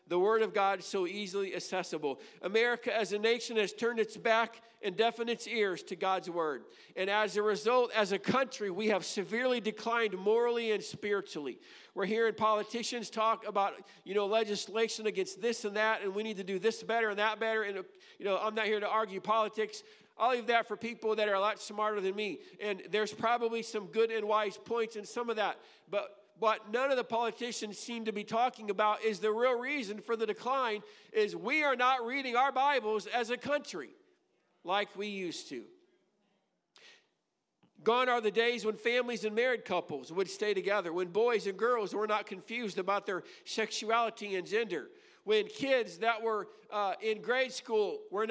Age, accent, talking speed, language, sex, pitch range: 50-69, American, 195 wpm, English, male, 205-235 Hz